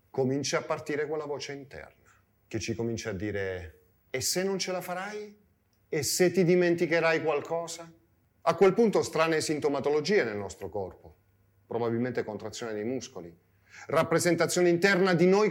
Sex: male